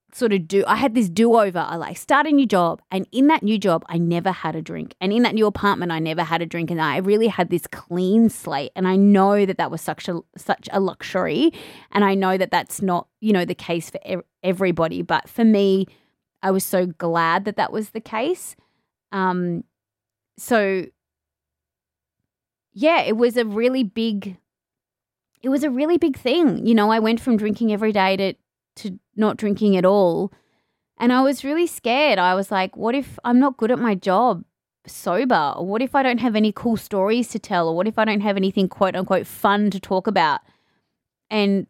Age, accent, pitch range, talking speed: 20-39, Australian, 175-230 Hz, 210 wpm